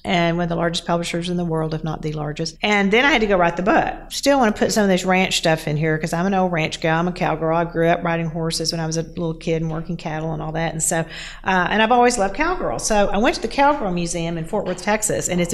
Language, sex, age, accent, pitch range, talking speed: English, female, 40-59, American, 165-195 Hz, 310 wpm